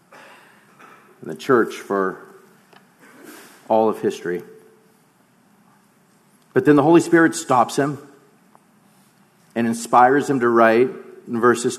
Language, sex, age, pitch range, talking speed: English, male, 50-69, 130-205 Hz, 100 wpm